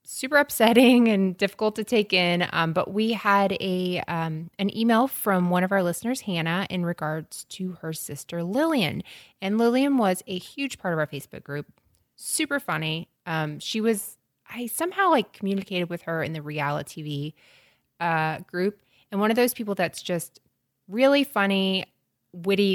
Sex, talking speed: female, 170 wpm